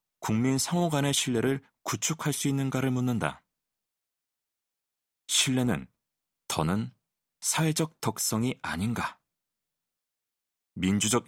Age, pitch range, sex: 40-59, 95-135 Hz, male